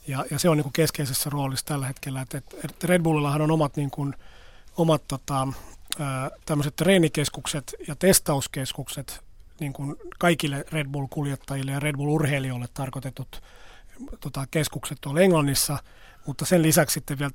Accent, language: native, Finnish